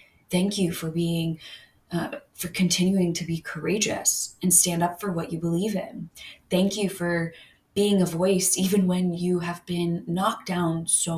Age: 20-39